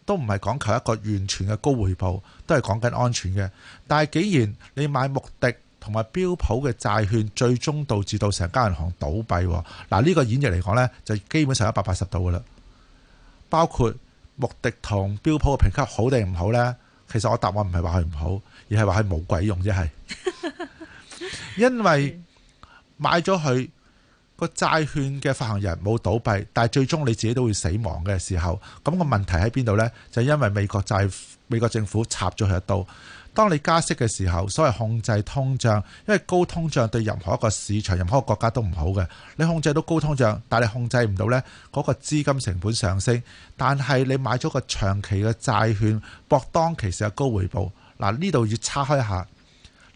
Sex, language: male, Chinese